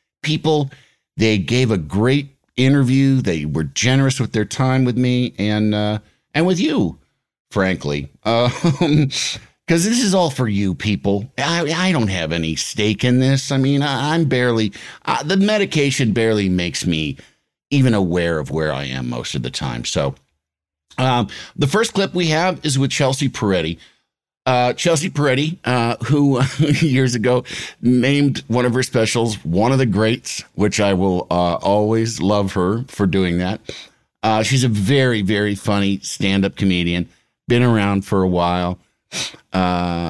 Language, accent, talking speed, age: English, American, 160 wpm, 50-69